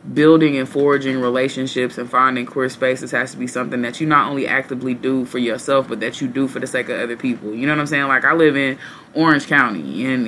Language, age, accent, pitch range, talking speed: English, 20-39, American, 135-160 Hz, 245 wpm